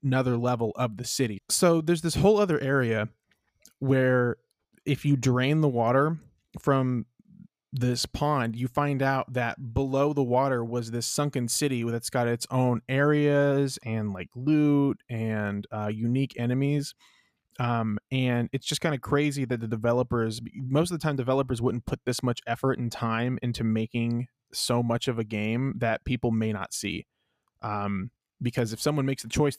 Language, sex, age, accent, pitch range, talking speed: English, male, 20-39, American, 115-140 Hz, 170 wpm